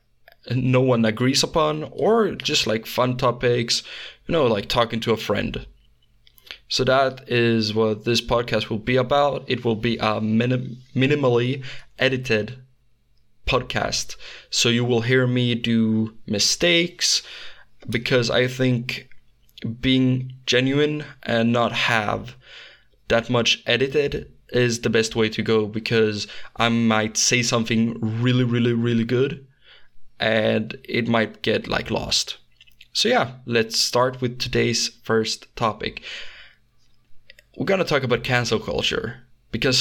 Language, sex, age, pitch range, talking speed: English, male, 20-39, 115-125 Hz, 130 wpm